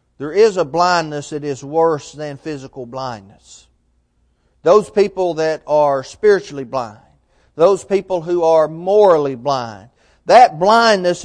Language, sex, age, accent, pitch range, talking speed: English, male, 40-59, American, 155-215 Hz, 130 wpm